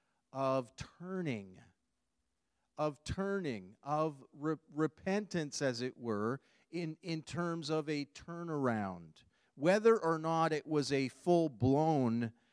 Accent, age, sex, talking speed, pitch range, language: American, 40-59, male, 105 wpm, 130-175 Hz, English